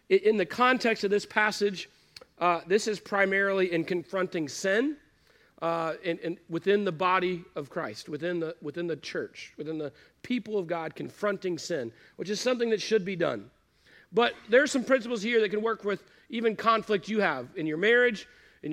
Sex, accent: male, American